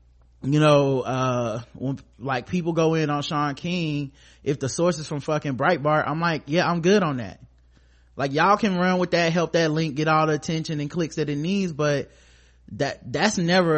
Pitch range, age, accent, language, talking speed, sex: 120-155 Hz, 30-49, American, English, 205 wpm, male